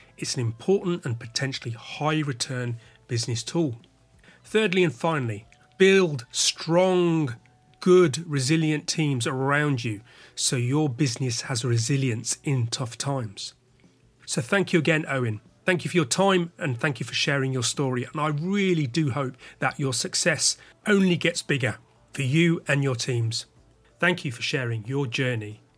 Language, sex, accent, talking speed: English, male, British, 155 wpm